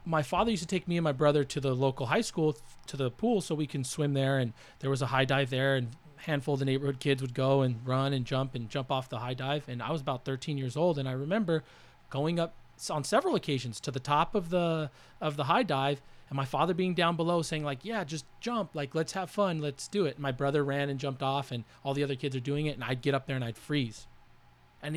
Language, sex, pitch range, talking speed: English, male, 135-170 Hz, 275 wpm